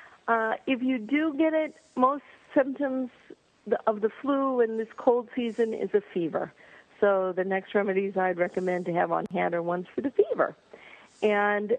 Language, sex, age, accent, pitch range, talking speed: English, female, 50-69, American, 185-250 Hz, 175 wpm